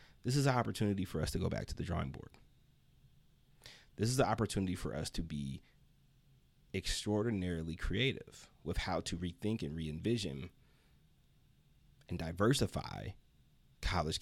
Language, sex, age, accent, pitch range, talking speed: English, male, 30-49, American, 85-115 Hz, 135 wpm